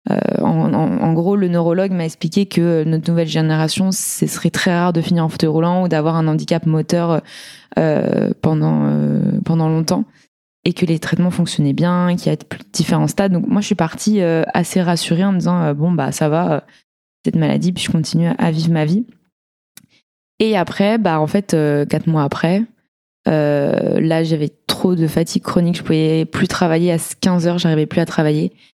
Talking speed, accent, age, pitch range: 205 wpm, French, 20-39, 155-185 Hz